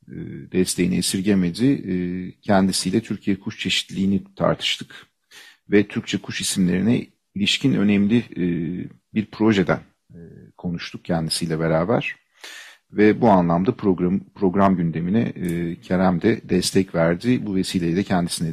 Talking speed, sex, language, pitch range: 100 wpm, male, Turkish, 90-115 Hz